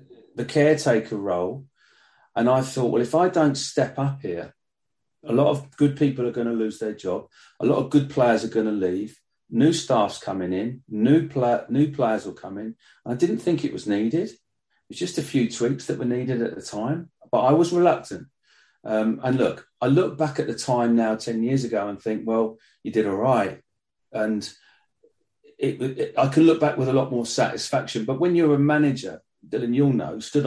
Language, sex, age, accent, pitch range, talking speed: English, male, 40-59, British, 110-145 Hz, 205 wpm